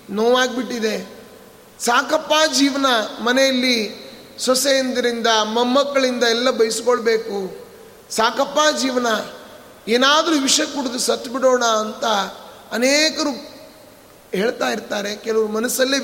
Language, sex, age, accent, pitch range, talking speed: Kannada, male, 30-49, native, 235-285 Hz, 80 wpm